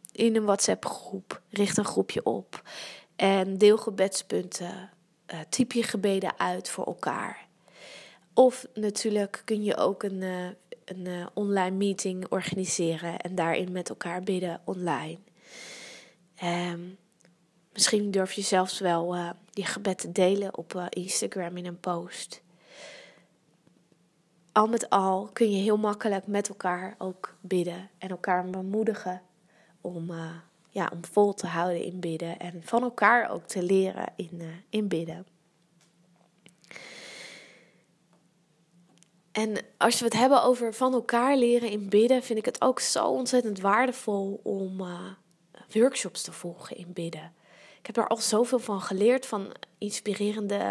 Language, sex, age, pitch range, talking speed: Dutch, female, 20-39, 175-215 Hz, 140 wpm